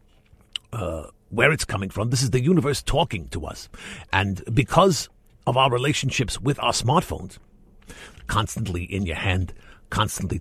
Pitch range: 105-145 Hz